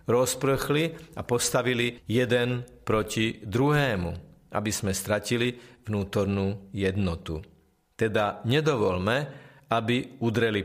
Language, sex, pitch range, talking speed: Slovak, male, 105-130 Hz, 85 wpm